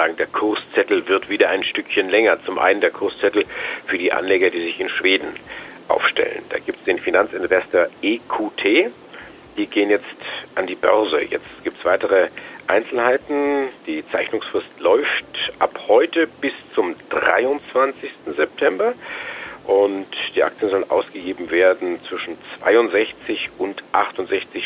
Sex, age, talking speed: male, 50-69, 135 wpm